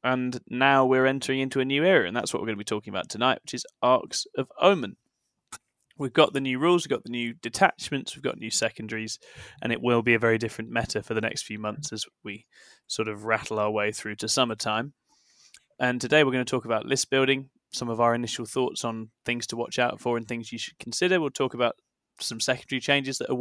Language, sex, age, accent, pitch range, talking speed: English, male, 20-39, British, 110-130 Hz, 240 wpm